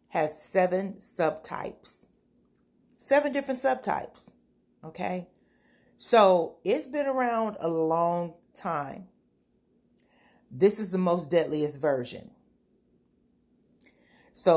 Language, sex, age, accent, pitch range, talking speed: English, female, 40-59, American, 150-195 Hz, 85 wpm